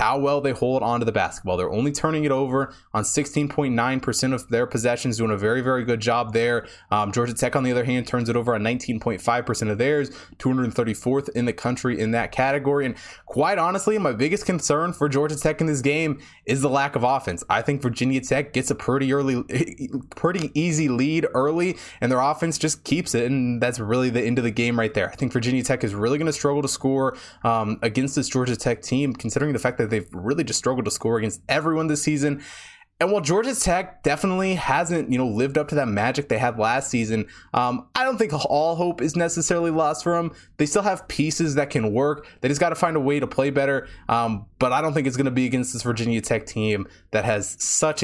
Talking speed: 230 wpm